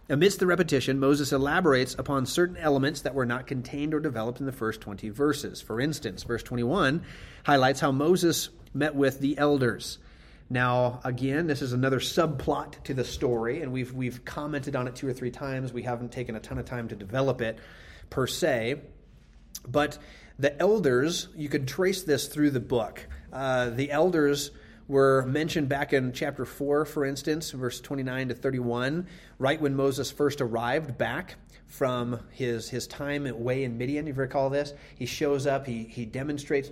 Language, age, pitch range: English, 30-49, 125-145 Hz